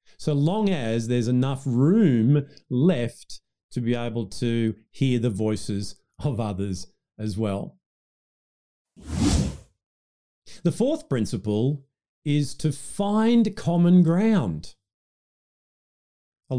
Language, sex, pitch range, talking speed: English, male, 115-175 Hz, 100 wpm